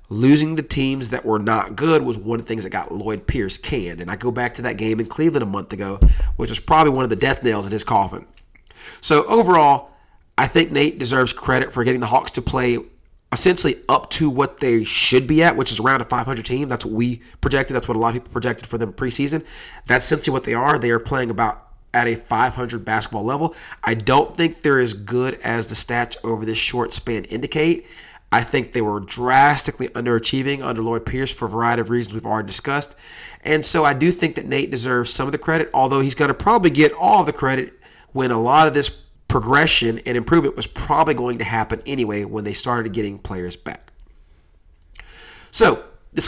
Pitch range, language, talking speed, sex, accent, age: 115-140 Hz, English, 220 wpm, male, American, 30-49